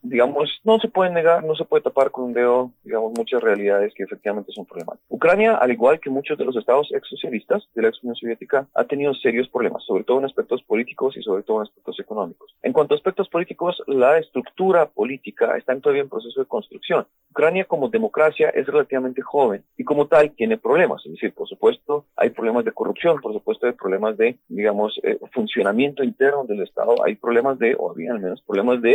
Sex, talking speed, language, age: male, 210 wpm, Spanish, 40-59